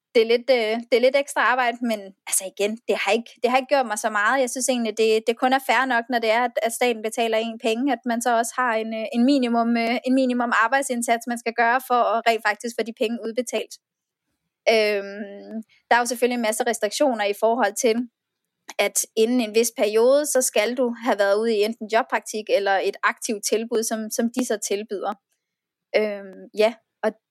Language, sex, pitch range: Danish, female, 215-250 Hz